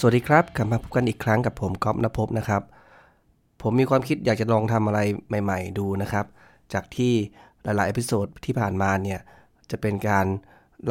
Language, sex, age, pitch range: Thai, male, 20-39, 95-110 Hz